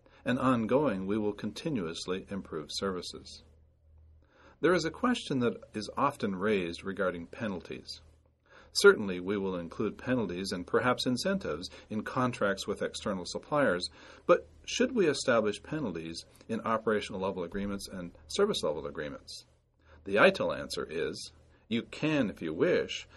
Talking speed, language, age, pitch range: 135 wpm, English, 40-59, 75-110 Hz